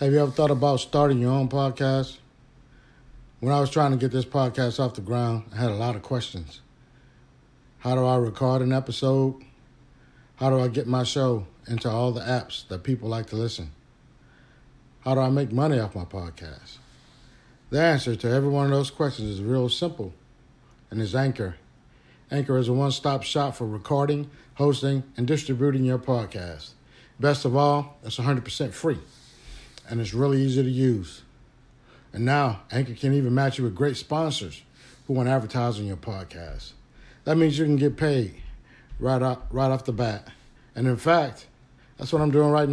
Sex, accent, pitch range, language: male, American, 120-135 Hz, English